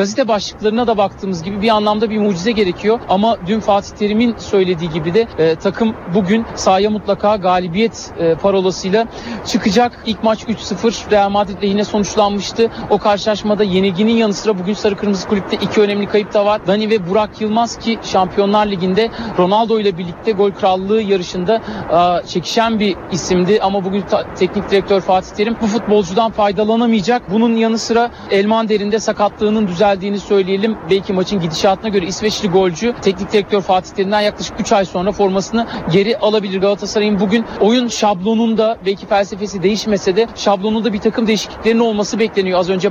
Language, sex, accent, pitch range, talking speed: Turkish, male, native, 195-220 Hz, 160 wpm